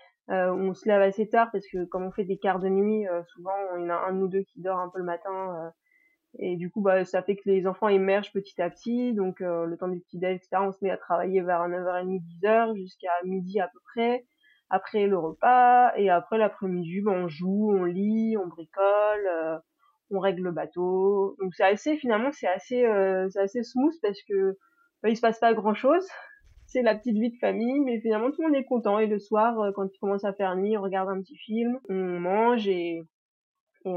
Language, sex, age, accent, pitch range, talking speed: French, female, 20-39, French, 180-220 Hz, 235 wpm